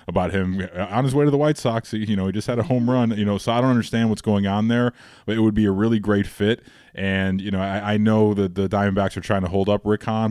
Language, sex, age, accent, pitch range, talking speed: English, male, 20-39, American, 95-115 Hz, 295 wpm